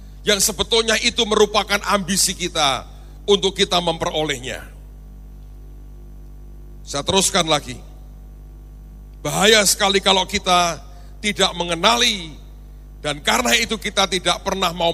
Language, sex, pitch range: Indonesian, male, 145-200 Hz